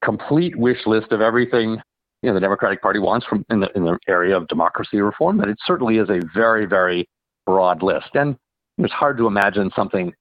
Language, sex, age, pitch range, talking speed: English, male, 50-69, 95-120 Hz, 205 wpm